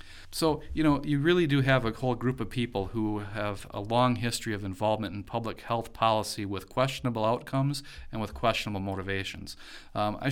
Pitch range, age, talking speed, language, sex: 100-125 Hz, 40-59, 185 wpm, English, male